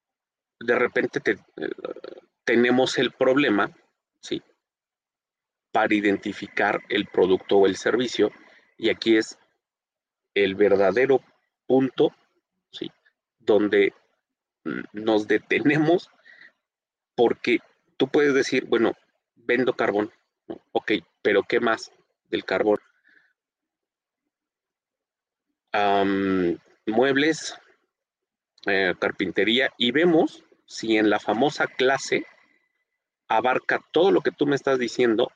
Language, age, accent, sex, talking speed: Spanish, 30-49, Mexican, male, 100 wpm